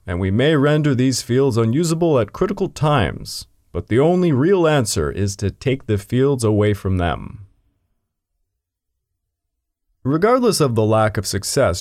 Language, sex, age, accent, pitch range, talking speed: English, male, 30-49, American, 100-140 Hz, 145 wpm